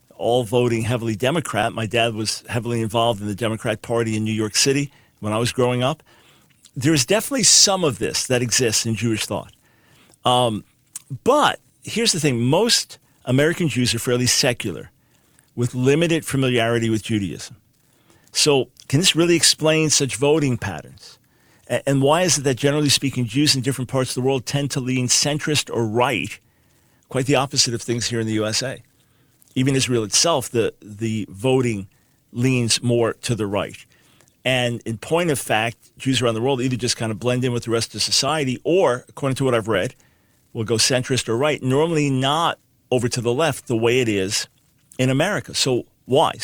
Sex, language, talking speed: male, English, 180 wpm